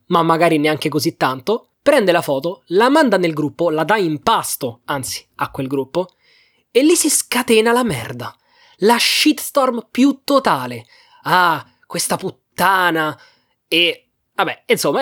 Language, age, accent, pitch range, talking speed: Italian, 20-39, native, 150-230 Hz, 145 wpm